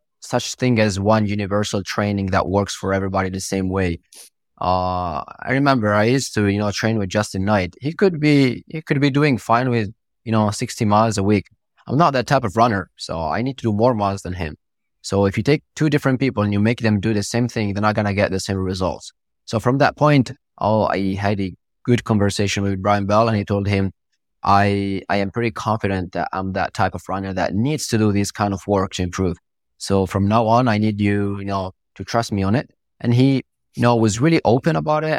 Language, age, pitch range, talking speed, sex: English, 20-39, 95-115 Hz, 235 wpm, male